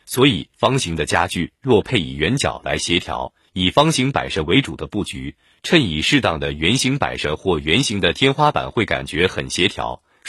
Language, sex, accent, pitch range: Chinese, male, native, 85-140 Hz